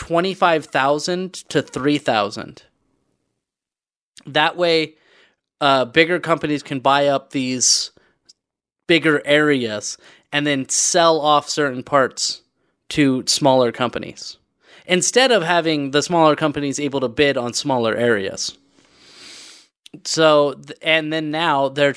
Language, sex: English, male